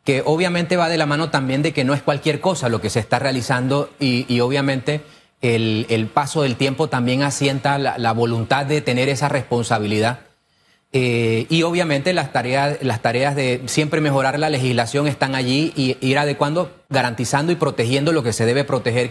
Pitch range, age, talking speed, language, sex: 125-150 Hz, 30-49, 185 wpm, Spanish, male